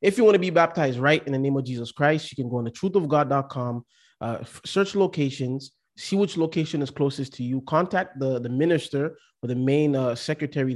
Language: English